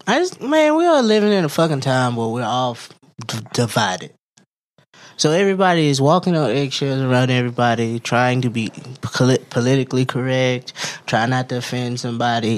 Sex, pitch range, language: male, 125-180 Hz, English